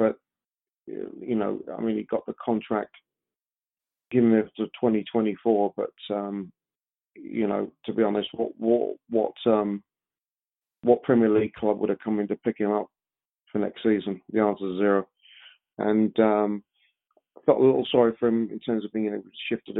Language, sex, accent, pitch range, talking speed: English, male, British, 105-115 Hz, 175 wpm